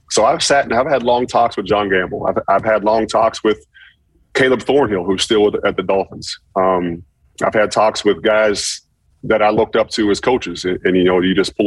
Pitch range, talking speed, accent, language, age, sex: 95-110 Hz, 230 wpm, American, English, 30-49, male